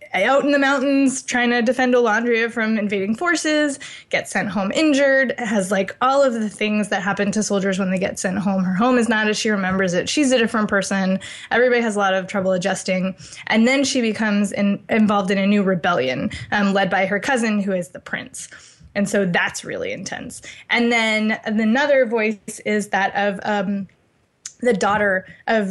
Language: English